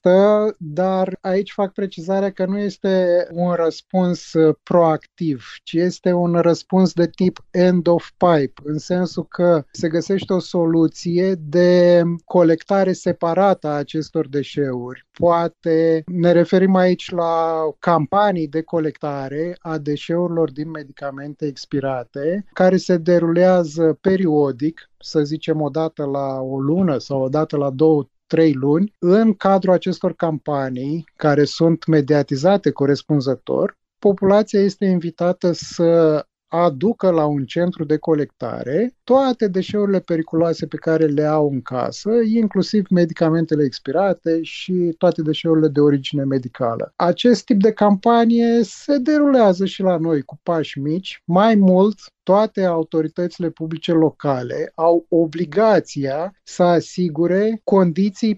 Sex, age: male, 30-49